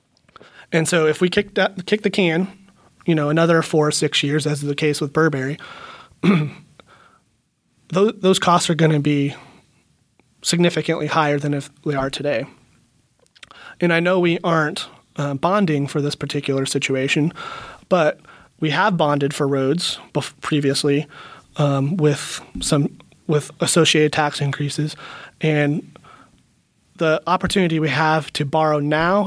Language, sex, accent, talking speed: English, male, American, 145 wpm